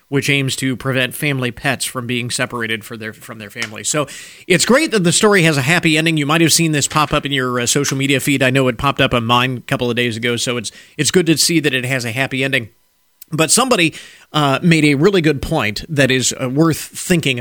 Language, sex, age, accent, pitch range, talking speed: English, male, 40-59, American, 115-150 Hz, 250 wpm